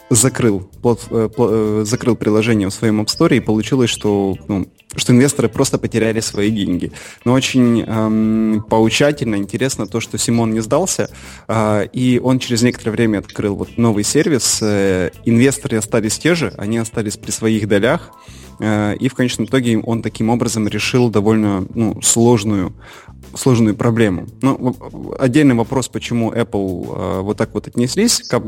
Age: 20-39